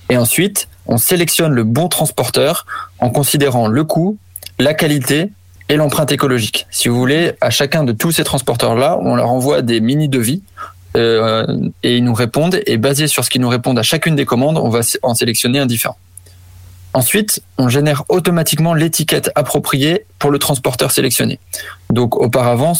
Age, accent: 20-39, French